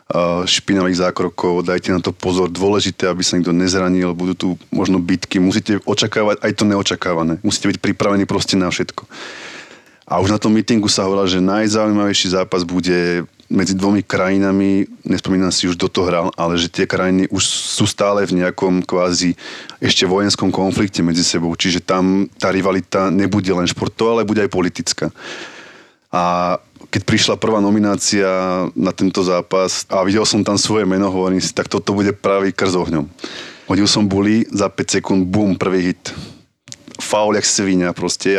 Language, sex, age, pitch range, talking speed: Slovak, male, 20-39, 90-100 Hz, 165 wpm